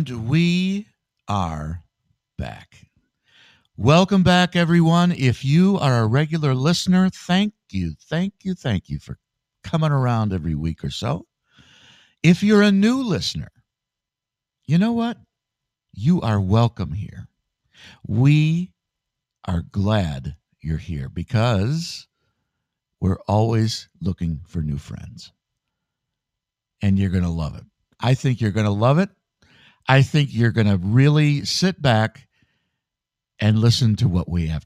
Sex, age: male, 60-79